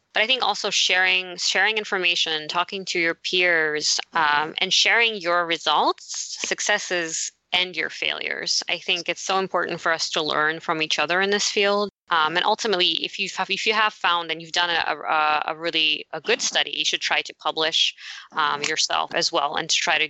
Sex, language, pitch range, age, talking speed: female, English, 160-195 Hz, 20-39, 205 wpm